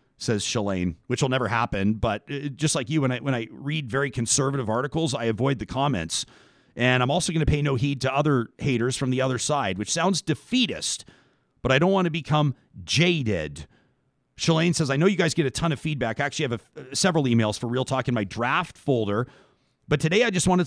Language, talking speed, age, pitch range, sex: English, 215 wpm, 40-59, 125-155 Hz, male